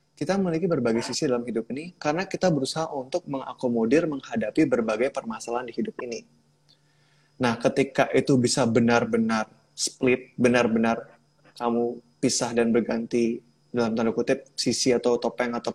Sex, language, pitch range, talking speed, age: male, English, 115-150 Hz, 135 wpm, 20-39